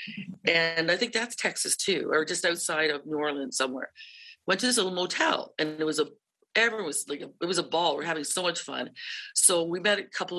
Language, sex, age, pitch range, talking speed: English, female, 50-69, 160-210 Hz, 230 wpm